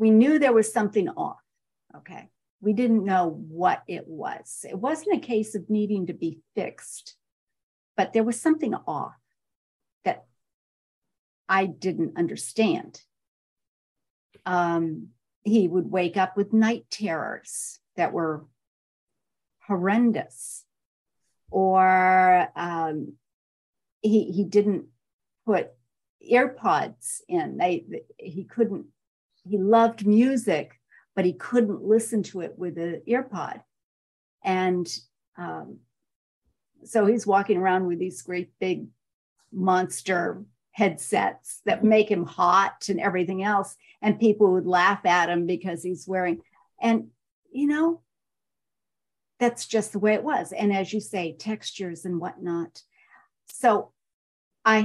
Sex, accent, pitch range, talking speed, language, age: female, American, 180-220 Hz, 120 wpm, English, 50-69